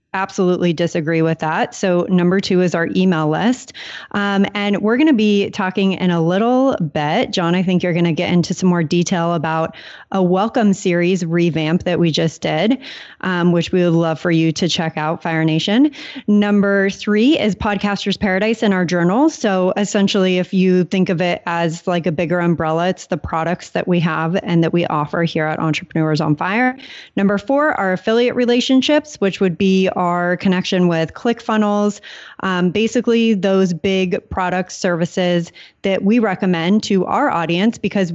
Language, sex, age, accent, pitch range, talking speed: English, female, 30-49, American, 175-210 Hz, 180 wpm